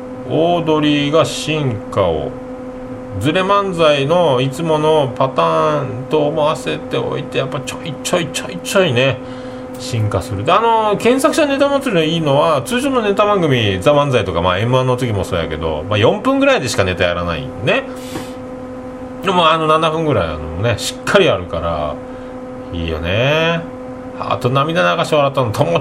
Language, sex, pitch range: Japanese, male, 115-160 Hz